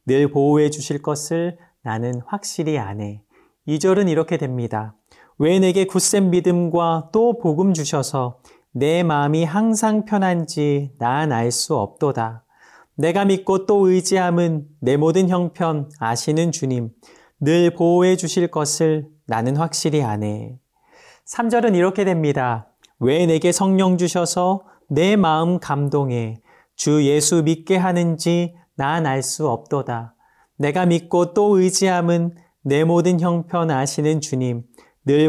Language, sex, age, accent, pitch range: Korean, male, 40-59, native, 140-180 Hz